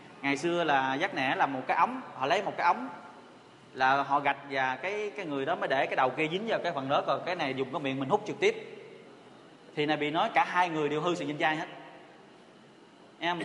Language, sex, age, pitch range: Vietnamese, male, 20-39, 140-175 Hz